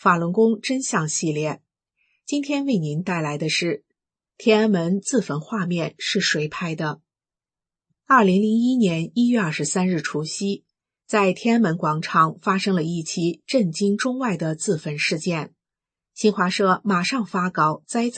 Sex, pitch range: female, 160-210 Hz